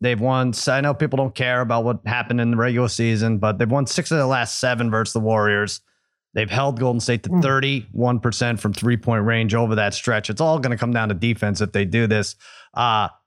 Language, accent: English, American